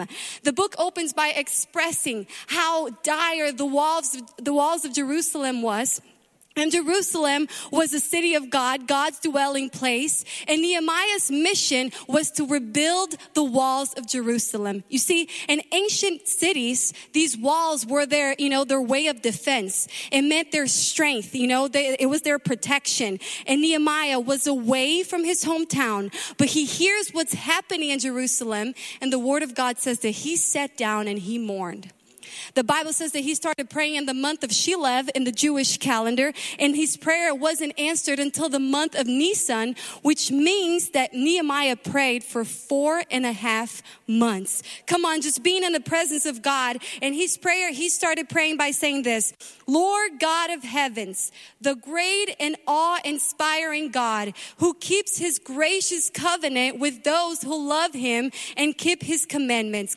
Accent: American